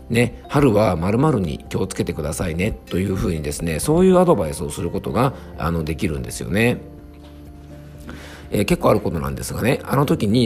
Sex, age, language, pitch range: male, 50-69, Japanese, 80-115 Hz